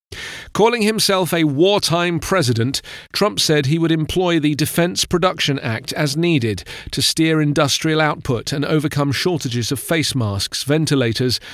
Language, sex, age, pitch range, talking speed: English, male, 40-59, 130-165 Hz, 140 wpm